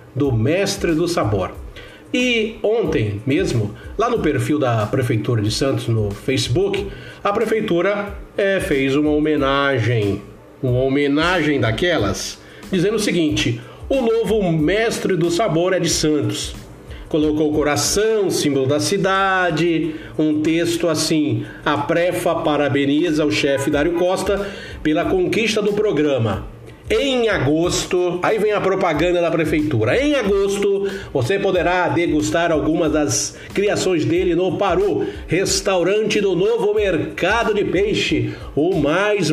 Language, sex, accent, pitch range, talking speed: Portuguese, male, Brazilian, 145-205 Hz, 125 wpm